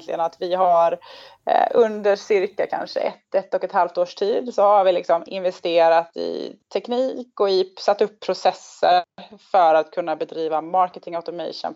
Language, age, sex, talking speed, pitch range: Swedish, 20-39, female, 165 wpm, 170-220 Hz